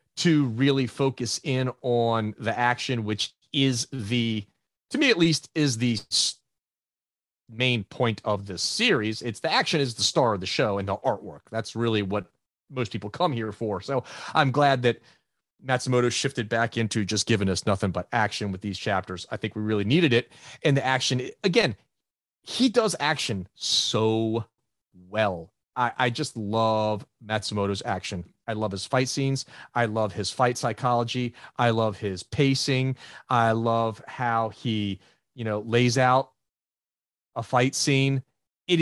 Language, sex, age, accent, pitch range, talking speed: English, male, 30-49, American, 110-135 Hz, 160 wpm